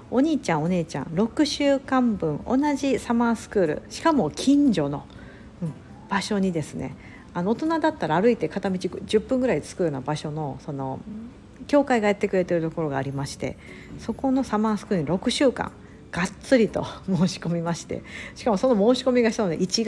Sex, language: female, Japanese